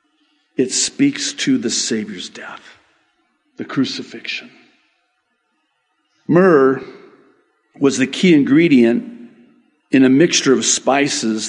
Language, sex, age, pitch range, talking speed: English, male, 50-69, 120-150 Hz, 95 wpm